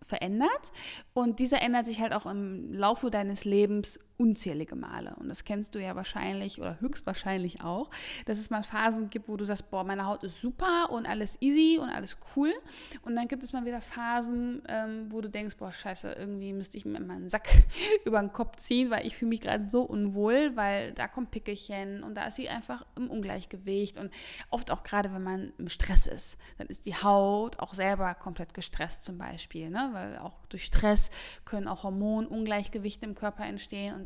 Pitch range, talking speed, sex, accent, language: 195-235 Hz, 200 wpm, female, German, German